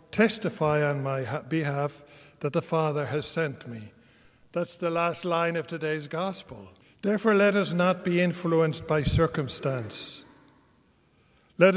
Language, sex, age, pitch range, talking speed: English, male, 60-79, 155-180 Hz, 135 wpm